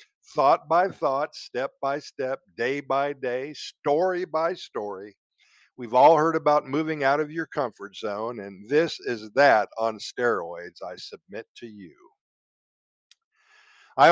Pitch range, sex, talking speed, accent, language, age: 120-160 Hz, male, 140 wpm, American, Italian, 50-69